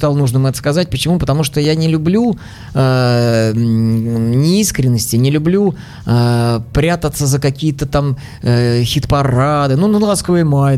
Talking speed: 120 wpm